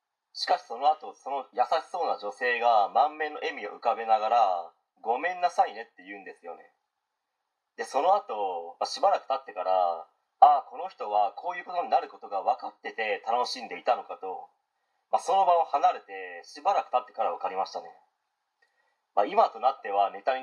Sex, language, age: male, Japanese, 30-49